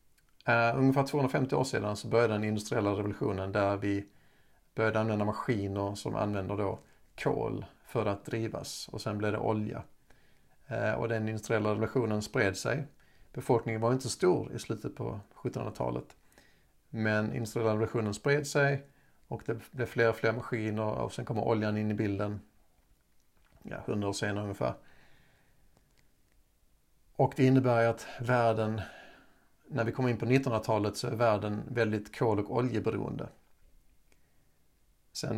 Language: Swedish